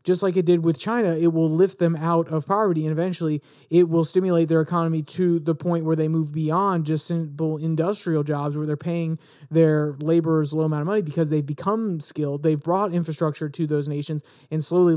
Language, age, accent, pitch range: English, 30-49, American, 155-185 Hz